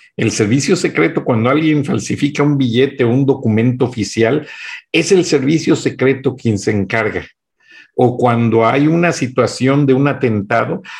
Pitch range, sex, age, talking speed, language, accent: 125-155 Hz, male, 50-69, 145 wpm, Spanish, Mexican